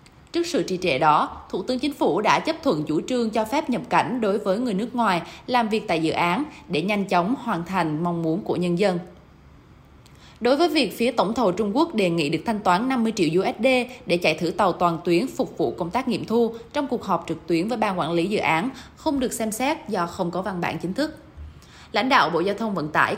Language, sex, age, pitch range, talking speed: Vietnamese, female, 10-29, 175-245 Hz, 245 wpm